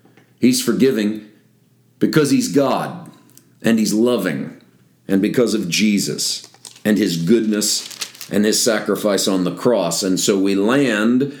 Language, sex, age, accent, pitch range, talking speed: English, male, 40-59, American, 95-115 Hz, 130 wpm